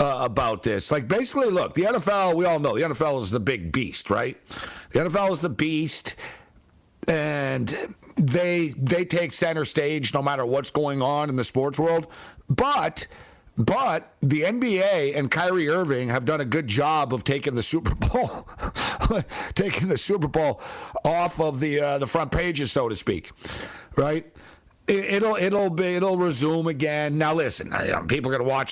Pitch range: 125-160 Hz